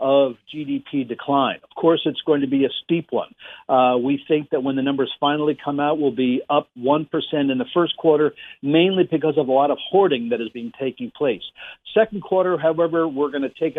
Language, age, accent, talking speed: English, 50-69, American, 215 wpm